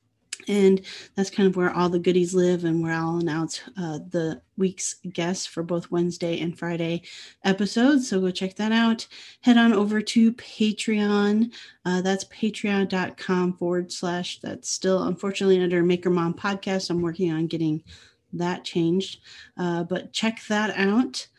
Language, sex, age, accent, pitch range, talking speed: English, female, 30-49, American, 175-200 Hz, 155 wpm